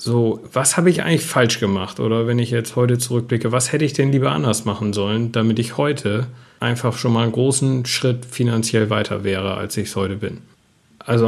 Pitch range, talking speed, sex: 105-120 Hz, 205 wpm, male